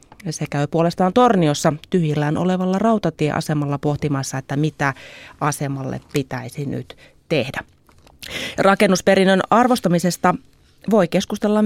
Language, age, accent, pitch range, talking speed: Finnish, 30-49, native, 155-200 Hz, 95 wpm